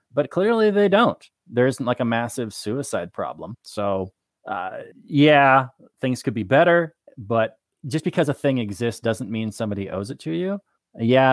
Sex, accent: male, American